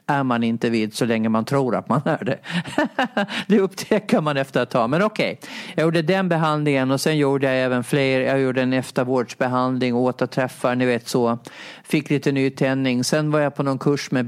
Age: 40-59